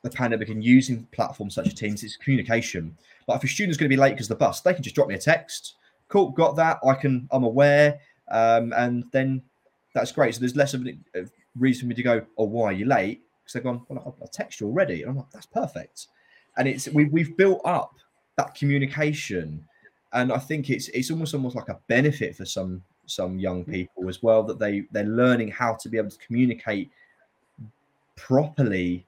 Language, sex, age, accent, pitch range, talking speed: English, male, 20-39, British, 110-135 Hz, 215 wpm